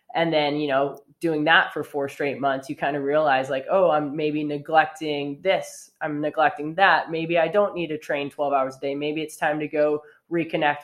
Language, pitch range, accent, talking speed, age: English, 135-155 Hz, American, 215 wpm, 20-39